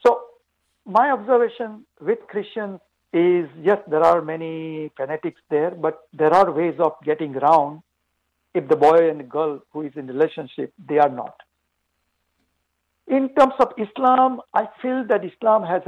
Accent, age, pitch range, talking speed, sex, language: Indian, 60-79, 150-210 Hz, 150 wpm, male, English